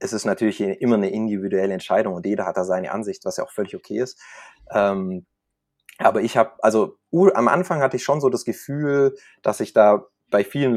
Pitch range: 105-140 Hz